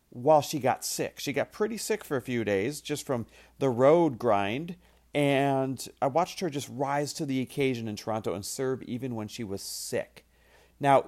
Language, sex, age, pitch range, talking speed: English, male, 40-59, 125-195 Hz, 195 wpm